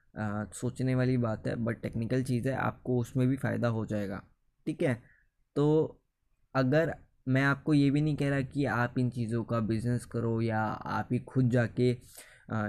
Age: 20-39